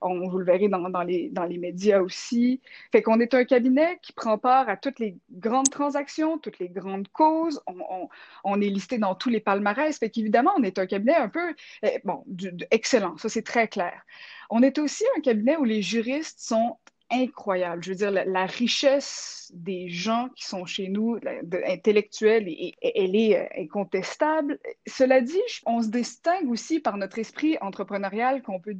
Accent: Canadian